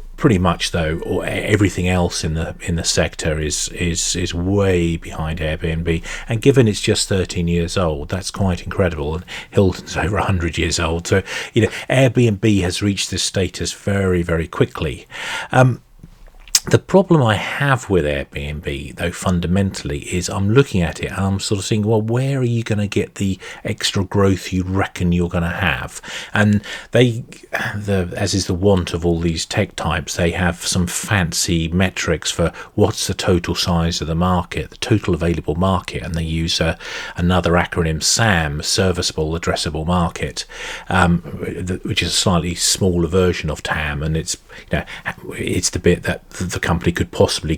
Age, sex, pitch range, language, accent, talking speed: 40-59, male, 85-105 Hz, English, British, 175 wpm